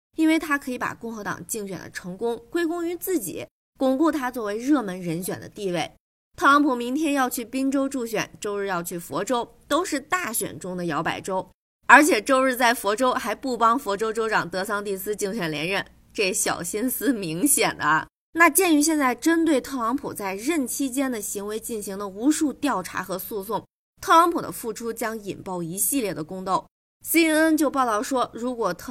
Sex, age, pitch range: female, 20-39, 195-285 Hz